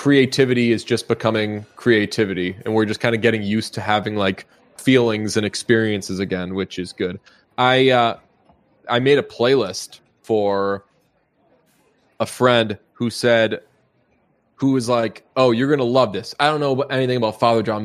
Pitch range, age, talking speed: 110-135 Hz, 20-39, 160 wpm